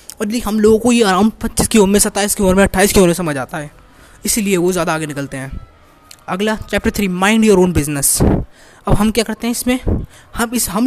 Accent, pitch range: native, 165-215 Hz